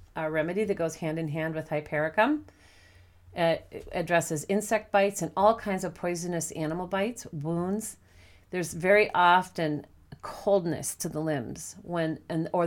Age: 40-59